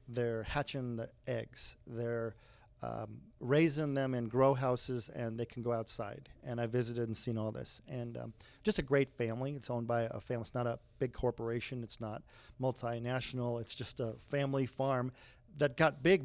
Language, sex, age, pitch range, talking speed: English, male, 40-59, 120-135 Hz, 185 wpm